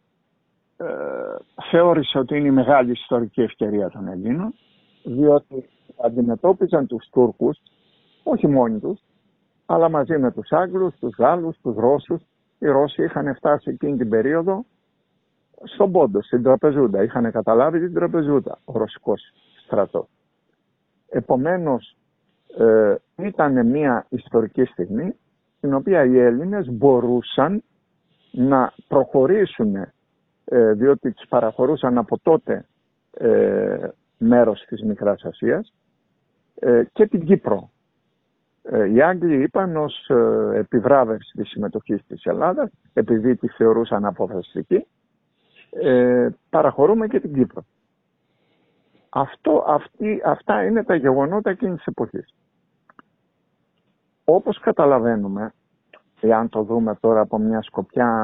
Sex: male